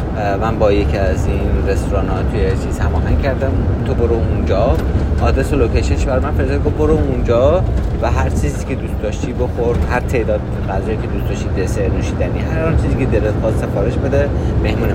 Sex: male